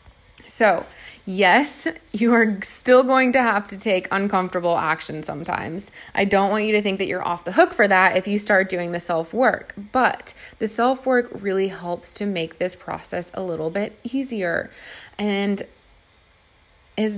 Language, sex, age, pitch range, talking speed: English, female, 20-39, 180-225 Hz, 165 wpm